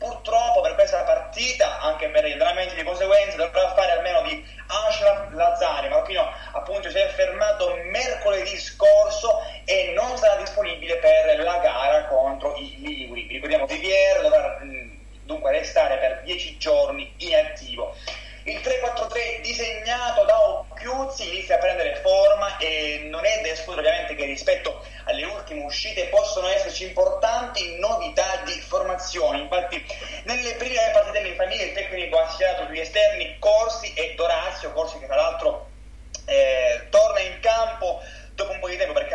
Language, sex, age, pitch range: Italian, male, 30-49, 190-310 Hz